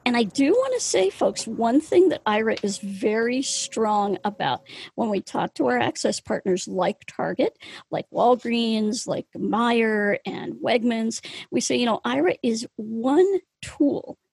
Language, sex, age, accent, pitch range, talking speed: English, female, 40-59, American, 215-290 Hz, 160 wpm